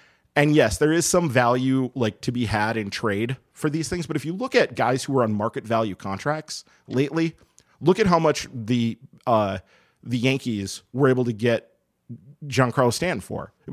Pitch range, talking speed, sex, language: 110-145 Hz, 190 wpm, male, English